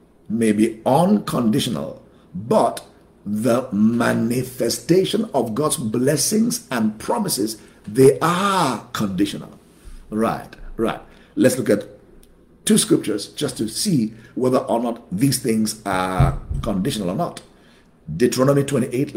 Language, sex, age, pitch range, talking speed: English, male, 50-69, 115-165 Hz, 110 wpm